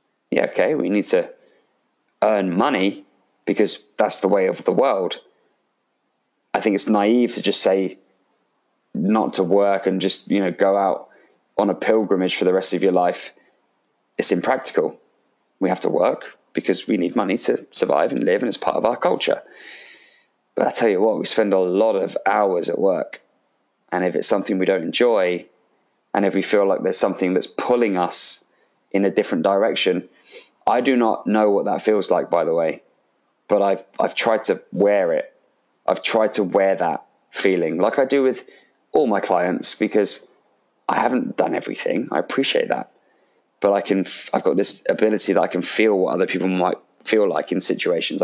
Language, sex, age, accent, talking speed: English, male, 20-39, British, 190 wpm